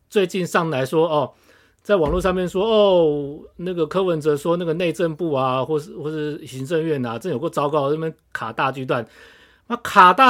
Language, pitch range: Chinese, 125-175 Hz